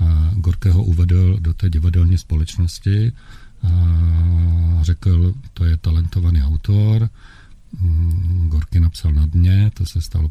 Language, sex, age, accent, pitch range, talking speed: Czech, male, 50-69, native, 80-95 Hz, 120 wpm